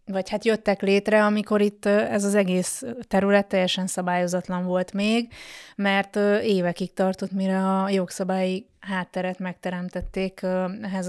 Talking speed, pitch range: 125 wpm, 185-210 Hz